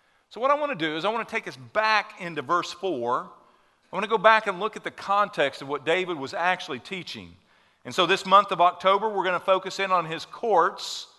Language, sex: English, male